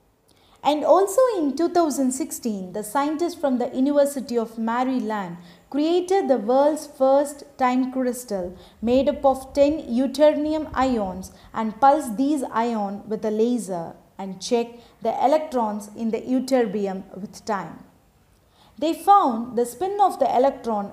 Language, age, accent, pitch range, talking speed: Tamil, 20-39, native, 220-280 Hz, 130 wpm